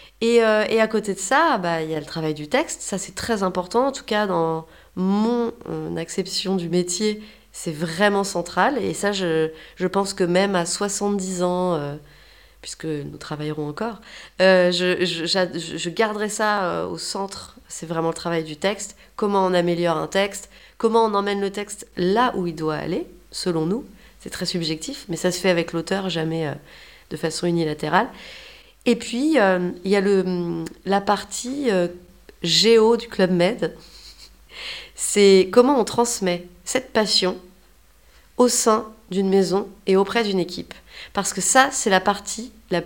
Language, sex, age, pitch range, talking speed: French, female, 30-49, 175-220 Hz, 175 wpm